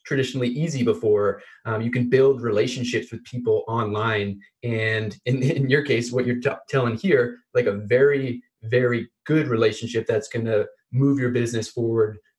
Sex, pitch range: male, 115-145 Hz